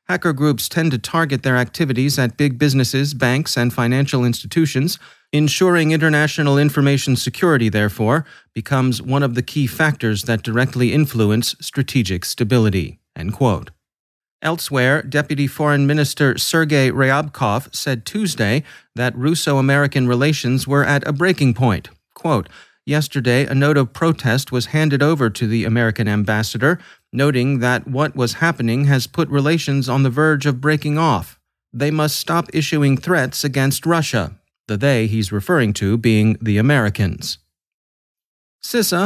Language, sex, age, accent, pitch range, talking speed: English, male, 30-49, American, 115-150 Hz, 140 wpm